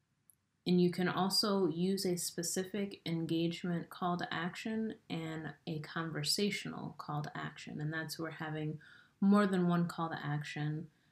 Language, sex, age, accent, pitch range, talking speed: English, female, 30-49, American, 155-195 Hz, 145 wpm